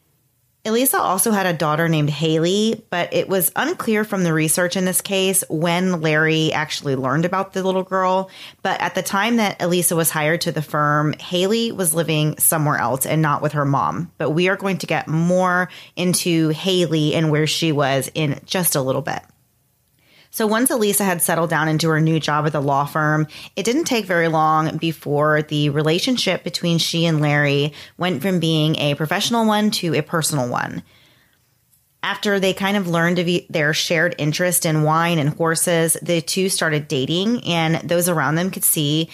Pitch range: 150-180 Hz